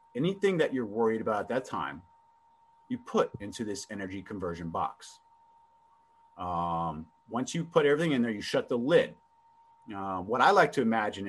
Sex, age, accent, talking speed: male, 30-49, American, 170 wpm